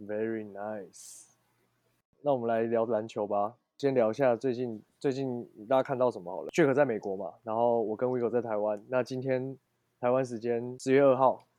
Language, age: Chinese, 20-39